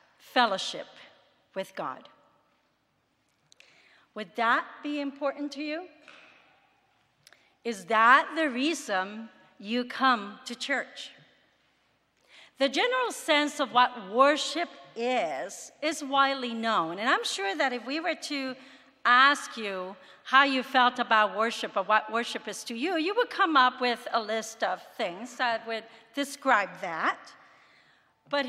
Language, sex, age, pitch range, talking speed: English, female, 50-69, 225-295 Hz, 130 wpm